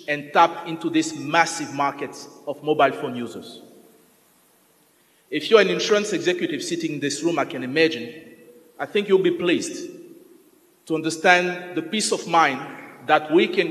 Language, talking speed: English, 160 wpm